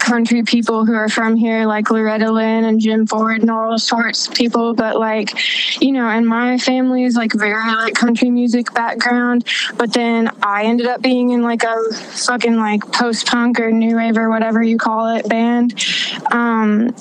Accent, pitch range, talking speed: American, 225-250 Hz, 185 wpm